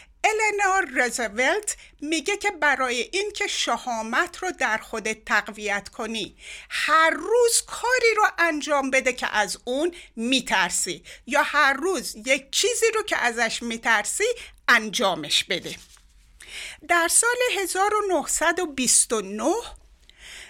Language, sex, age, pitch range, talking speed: Persian, female, 60-79, 230-355 Hz, 105 wpm